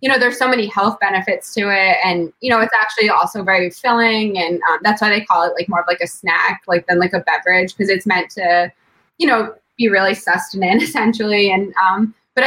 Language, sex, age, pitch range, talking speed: English, female, 20-39, 180-225 Hz, 230 wpm